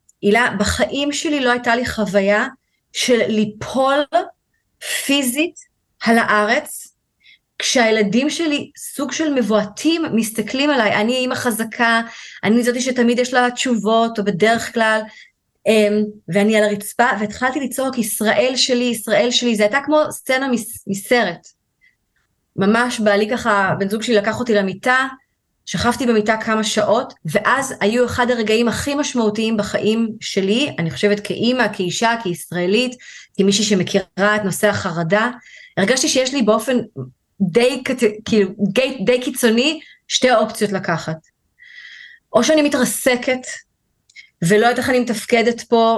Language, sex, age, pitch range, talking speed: Hebrew, female, 20-39, 210-255 Hz, 125 wpm